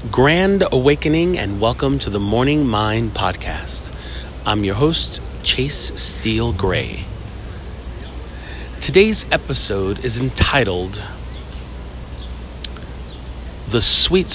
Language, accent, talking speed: English, American, 90 wpm